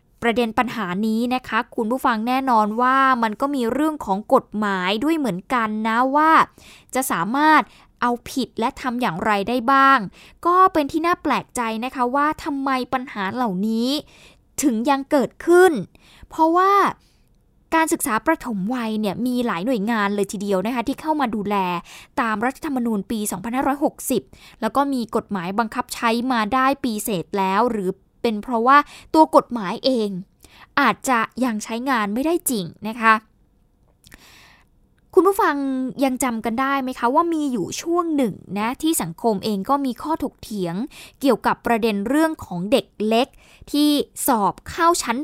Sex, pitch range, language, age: female, 220-280 Hz, Thai, 10-29